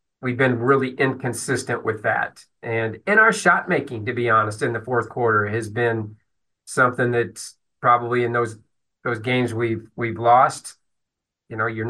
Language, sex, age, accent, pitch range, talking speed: English, male, 40-59, American, 115-135 Hz, 165 wpm